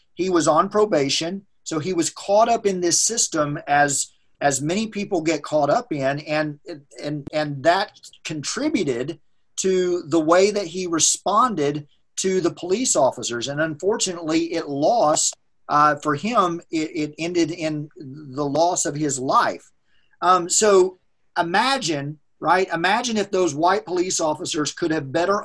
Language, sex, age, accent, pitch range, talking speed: English, male, 40-59, American, 145-170 Hz, 150 wpm